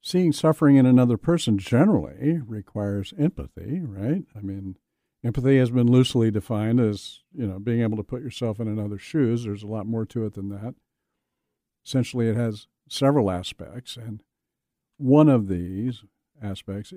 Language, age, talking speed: English, 50-69, 160 wpm